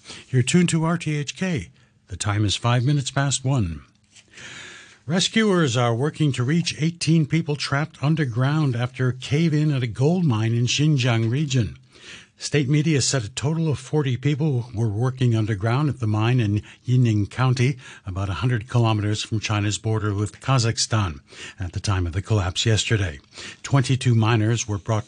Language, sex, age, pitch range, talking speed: English, male, 60-79, 110-145 Hz, 160 wpm